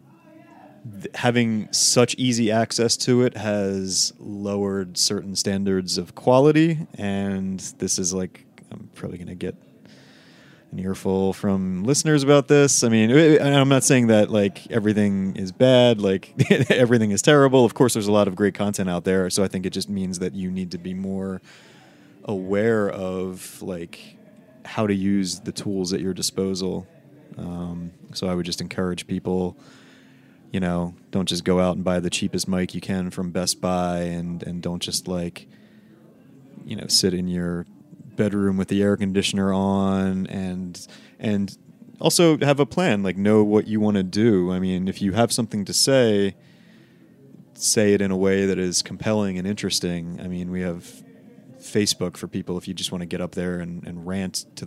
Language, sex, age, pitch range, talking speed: English, male, 30-49, 90-110 Hz, 180 wpm